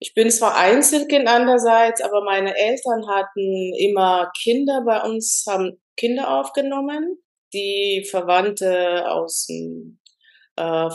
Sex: female